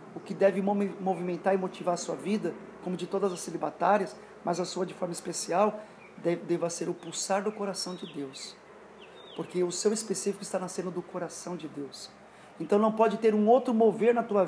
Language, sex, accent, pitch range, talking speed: Portuguese, male, Brazilian, 175-215 Hz, 195 wpm